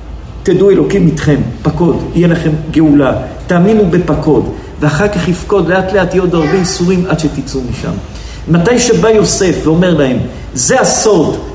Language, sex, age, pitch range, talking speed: Hebrew, male, 50-69, 150-210 Hz, 145 wpm